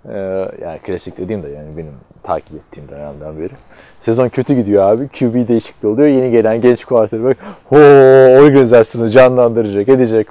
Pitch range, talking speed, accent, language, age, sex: 100-130 Hz, 155 wpm, native, Turkish, 30-49, male